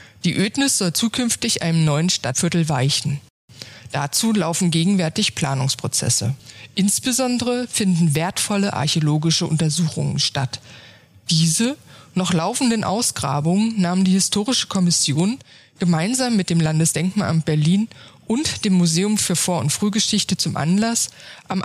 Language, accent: German, German